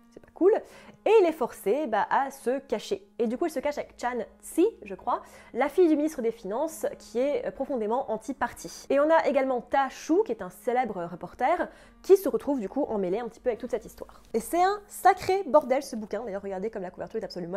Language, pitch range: French, 215-300 Hz